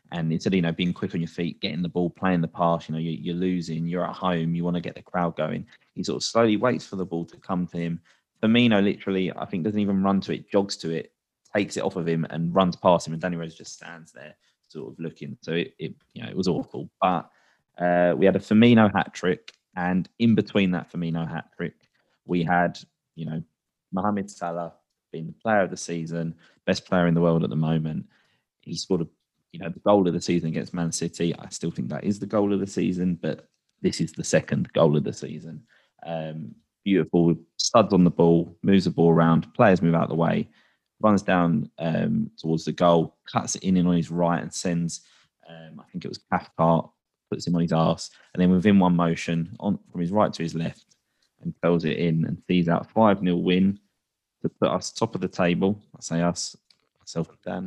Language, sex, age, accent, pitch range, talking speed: English, male, 20-39, British, 85-95 Hz, 230 wpm